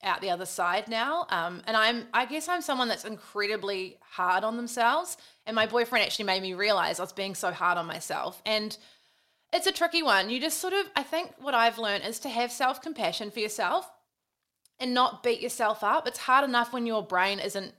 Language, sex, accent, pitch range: English, female, Australian, 205-260 Hz